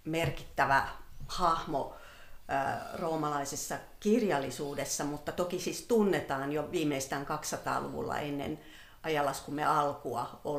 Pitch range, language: 145-165 Hz, Finnish